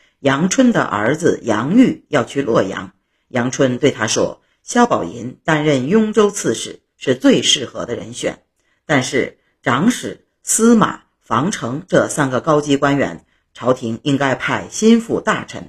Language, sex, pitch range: Chinese, female, 135-210 Hz